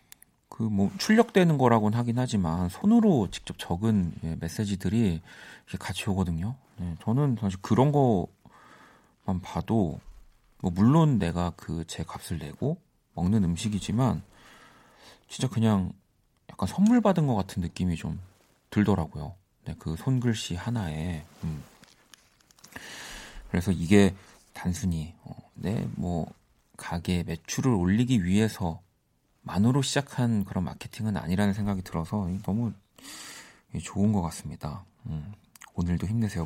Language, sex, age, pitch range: Korean, male, 40-59, 85-115 Hz